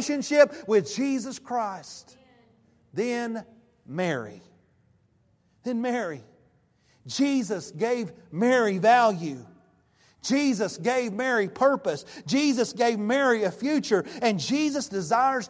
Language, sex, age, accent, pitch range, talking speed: English, male, 40-59, American, 145-225 Hz, 95 wpm